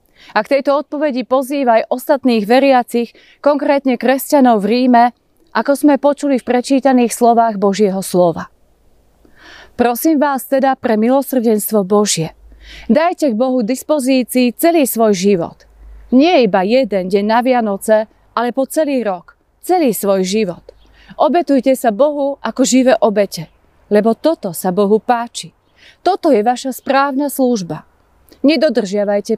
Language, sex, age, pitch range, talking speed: Slovak, female, 30-49, 215-270 Hz, 125 wpm